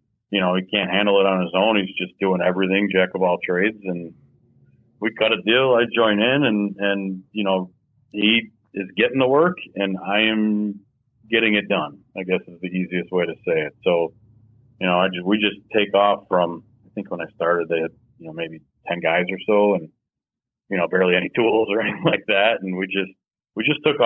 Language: English